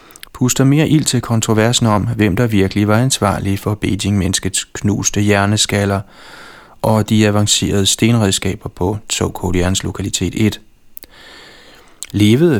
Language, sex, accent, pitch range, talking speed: Danish, male, native, 100-115 Hz, 115 wpm